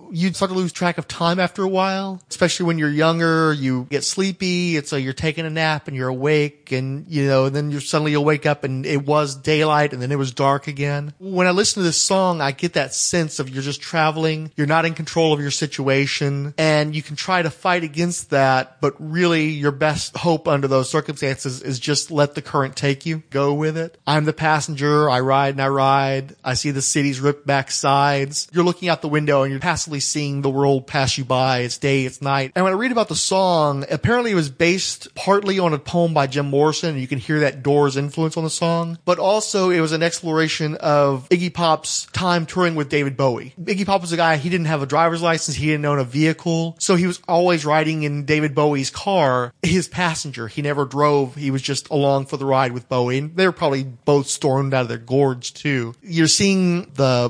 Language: English